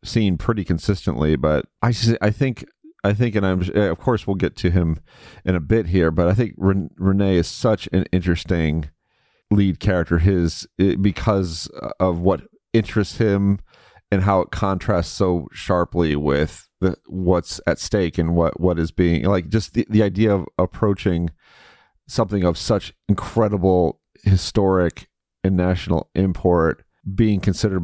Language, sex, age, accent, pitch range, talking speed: English, male, 40-59, American, 85-100 Hz, 155 wpm